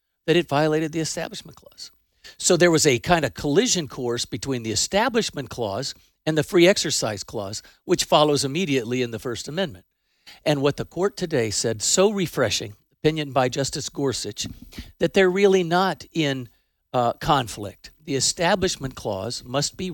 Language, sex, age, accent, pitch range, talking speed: English, male, 50-69, American, 125-165 Hz, 165 wpm